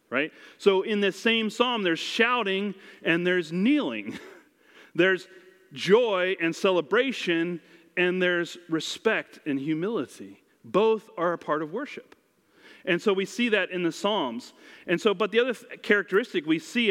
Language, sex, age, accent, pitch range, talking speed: English, male, 40-59, American, 155-205 Hz, 150 wpm